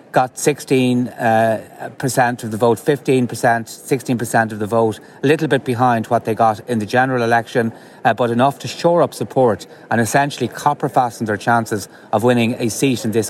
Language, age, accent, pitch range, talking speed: English, 30-49, Irish, 110-125 Hz, 180 wpm